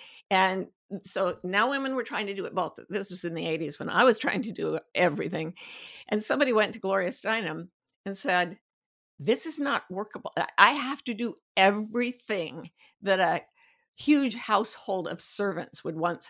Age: 50-69